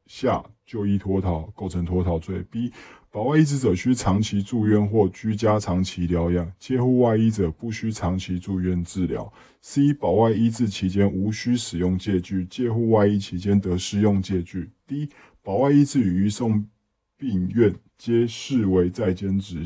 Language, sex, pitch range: Chinese, male, 90-105 Hz